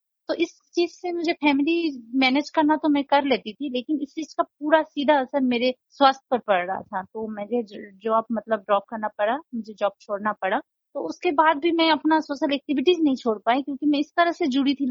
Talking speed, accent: 220 wpm, Indian